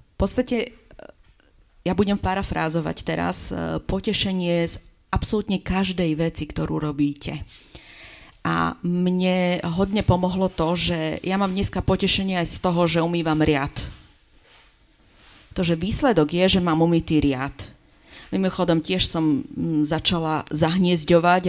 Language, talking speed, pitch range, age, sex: Slovak, 115 wpm, 155-185 Hz, 40-59, female